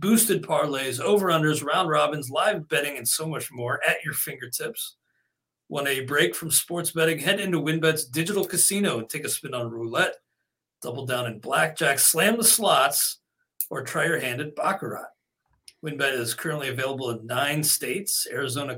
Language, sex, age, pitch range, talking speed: English, male, 40-59, 140-180 Hz, 165 wpm